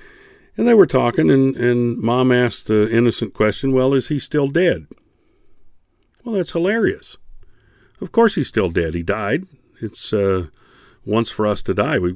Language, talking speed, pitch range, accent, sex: English, 170 wpm, 105-155 Hz, American, male